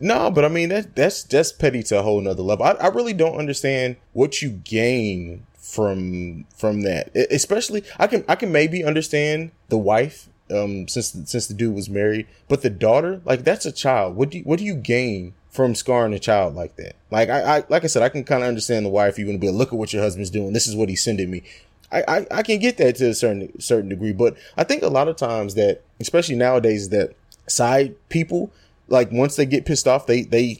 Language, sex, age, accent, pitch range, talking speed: English, male, 20-39, American, 110-150 Hz, 245 wpm